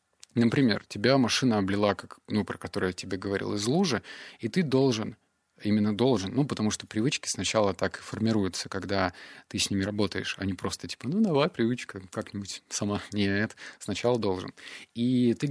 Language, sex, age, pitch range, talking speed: Russian, male, 20-39, 100-125 Hz, 170 wpm